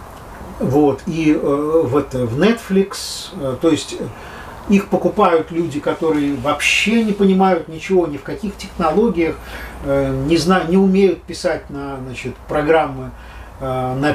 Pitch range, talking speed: 130-175 Hz, 120 wpm